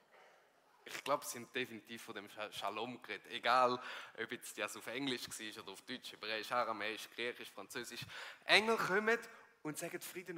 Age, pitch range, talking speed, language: 20-39, 135-175 Hz, 160 wpm, German